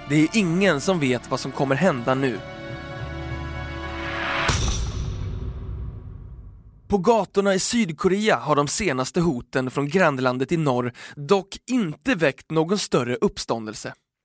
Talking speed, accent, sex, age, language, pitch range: 120 wpm, native, male, 20-39, Swedish, 130-195 Hz